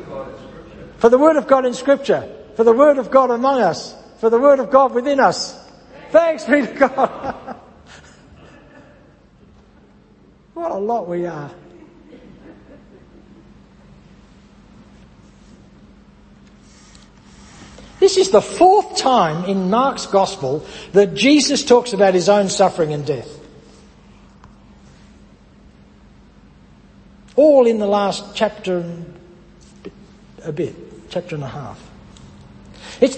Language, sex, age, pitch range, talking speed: English, male, 60-79, 180-270 Hz, 105 wpm